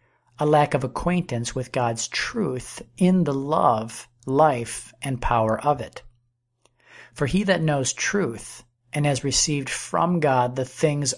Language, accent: English, American